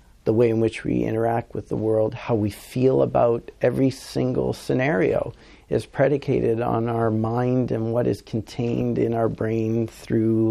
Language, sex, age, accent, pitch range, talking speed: English, male, 50-69, American, 110-125 Hz, 165 wpm